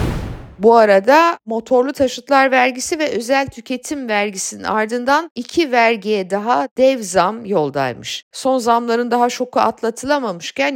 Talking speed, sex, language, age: 115 wpm, female, Turkish, 50-69